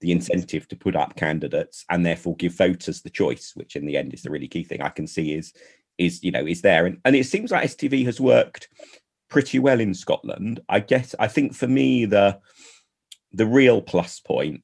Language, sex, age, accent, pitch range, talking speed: English, male, 40-59, British, 85-105 Hz, 215 wpm